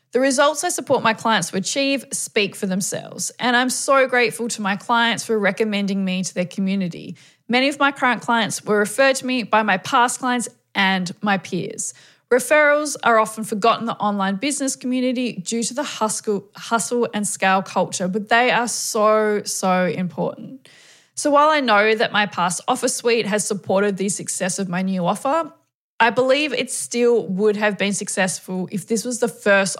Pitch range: 190-250 Hz